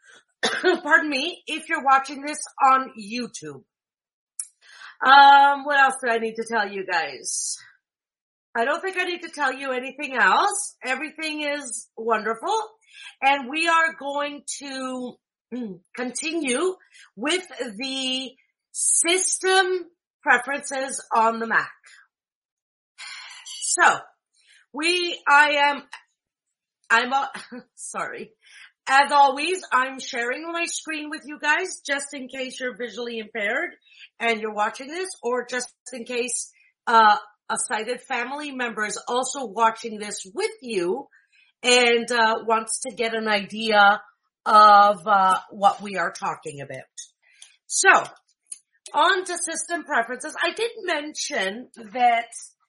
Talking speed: 125 wpm